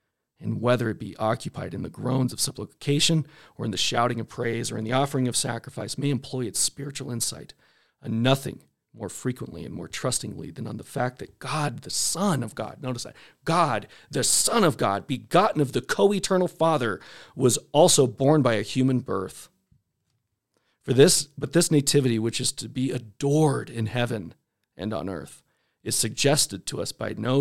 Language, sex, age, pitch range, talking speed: English, male, 40-59, 115-140 Hz, 185 wpm